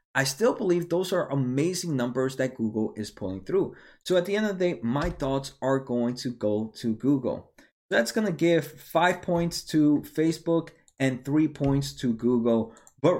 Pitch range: 125-170 Hz